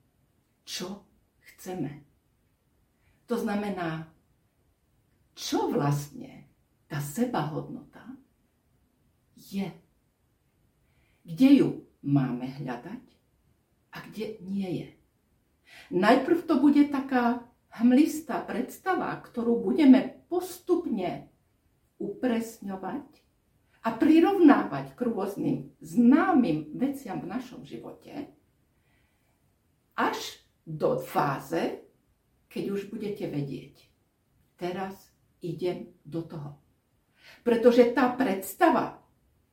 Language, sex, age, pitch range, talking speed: Slovak, female, 50-69, 175-275 Hz, 75 wpm